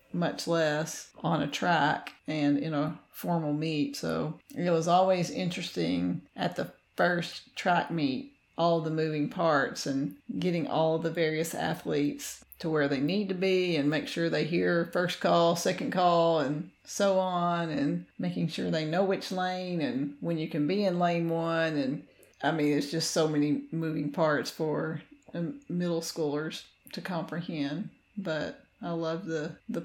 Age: 40-59